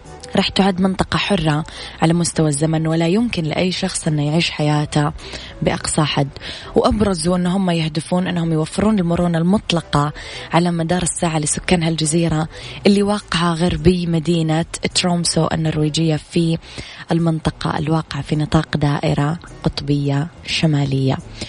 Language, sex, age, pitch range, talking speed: Arabic, female, 20-39, 155-180 Hz, 115 wpm